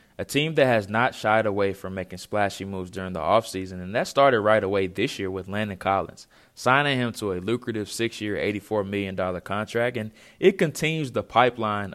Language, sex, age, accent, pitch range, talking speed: English, male, 20-39, American, 100-125 Hz, 190 wpm